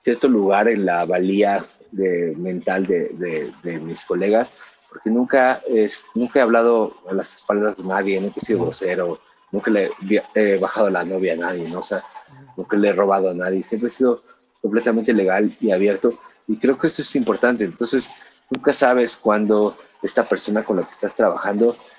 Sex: male